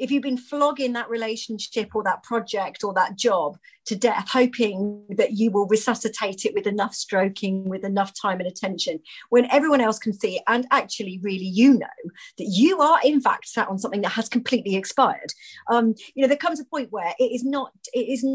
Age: 40-59